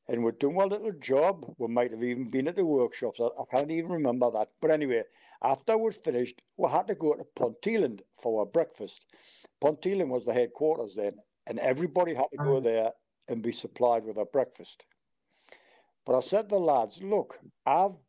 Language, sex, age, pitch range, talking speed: English, male, 60-79, 130-190 Hz, 195 wpm